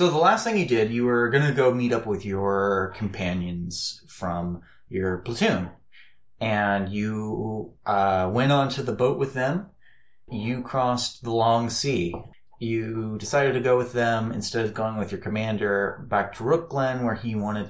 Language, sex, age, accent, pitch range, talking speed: English, male, 30-49, American, 100-130 Hz, 175 wpm